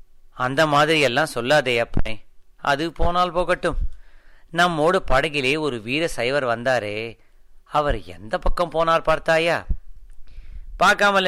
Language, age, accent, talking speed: Tamil, 30-49, native, 95 wpm